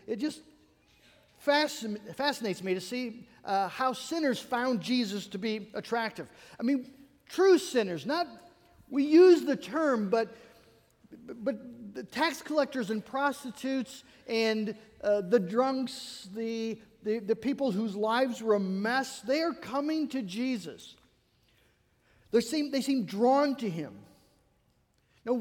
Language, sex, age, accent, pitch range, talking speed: English, male, 50-69, American, 215-275 Hz, 135 wpm